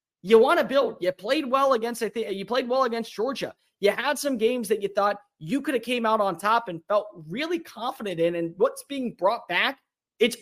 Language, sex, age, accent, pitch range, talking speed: English, male, 20-39, American, 165-225 Hz, 230 wpm